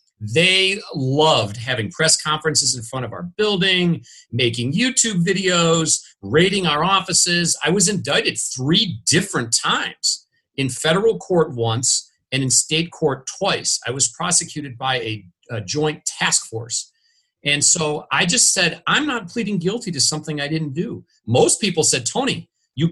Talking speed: 155 wpm